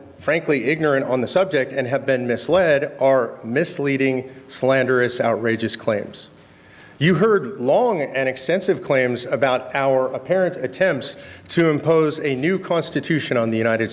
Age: 40-59